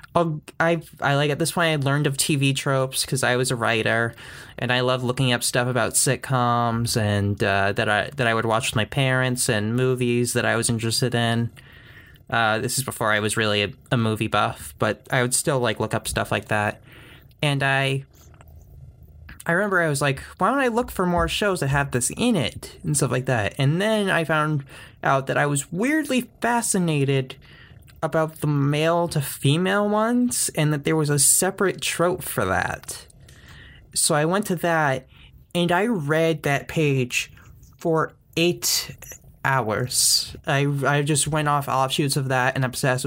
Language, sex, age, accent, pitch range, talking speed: English, male, 20-39, American, 120-155 Hz, 185 wpm